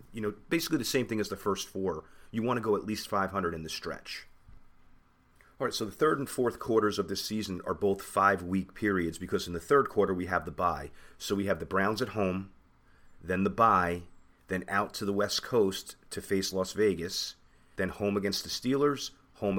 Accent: American